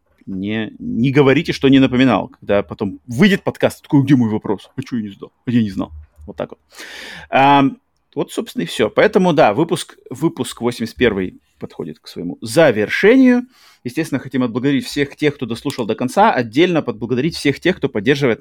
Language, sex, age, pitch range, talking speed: Russian, male, 30-49, 115-145 Hz, 180 wpm